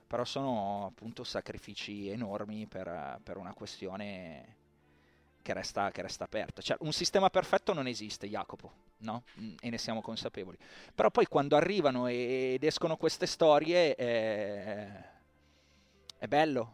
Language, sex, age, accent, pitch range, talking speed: Italian, male, 30-49, native, 105-130 Hz, 135 wpm